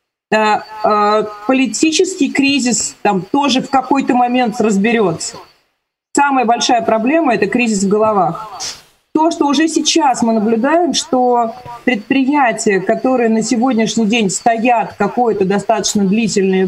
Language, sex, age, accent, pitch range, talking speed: Russian, female, 30-49, native, 210-260 Hz, 110 wpm